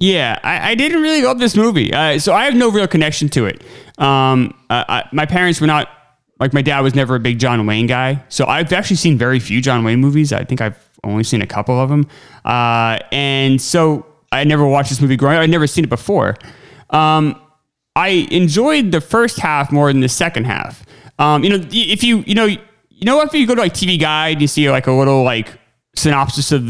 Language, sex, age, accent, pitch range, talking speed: English, male, 30-49, American, 135-190 Hz, 230 wpm